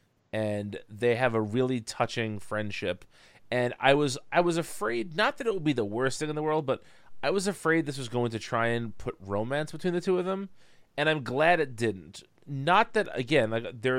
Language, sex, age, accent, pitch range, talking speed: English, male, 30-49, American, 105-135 Hz, 220 wpm